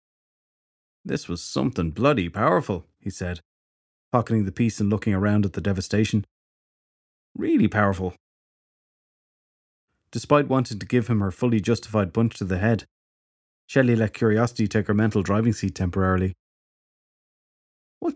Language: English